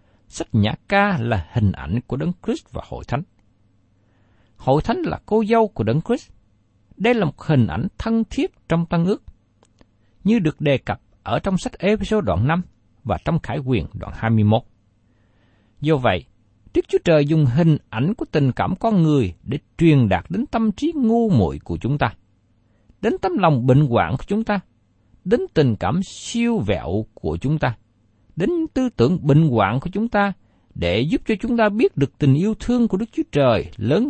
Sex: male